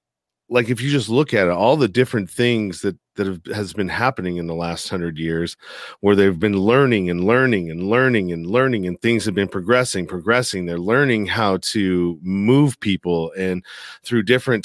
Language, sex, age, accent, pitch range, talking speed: English, male, 40-59, American, 95-125 Hz, 195 wpm